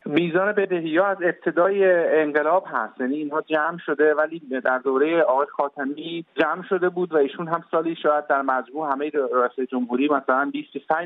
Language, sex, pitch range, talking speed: English, male, 120-150 Hz, 175 wpm